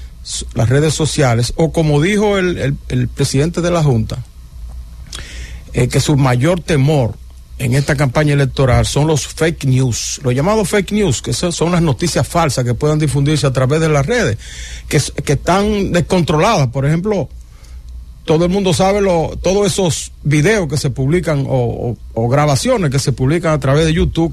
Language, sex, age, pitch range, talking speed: English, male, 50-69, 115-160 Hz, 175 wpm